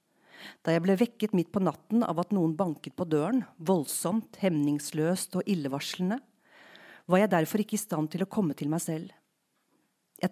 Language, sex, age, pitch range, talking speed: English, female, 40-59, 160-200 Hz, 175 wpm